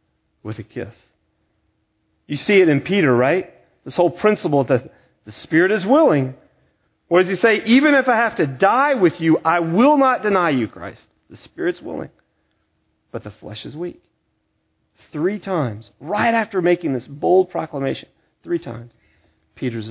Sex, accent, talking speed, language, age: male, American, 165 wpm, English, 40-59